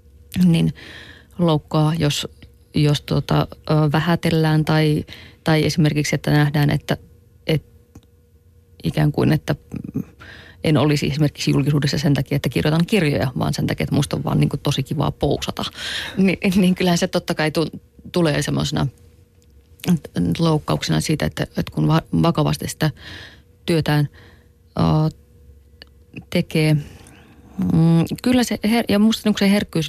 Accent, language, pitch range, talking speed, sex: native, Finnish, 135-160 Hz, 130 wpm, female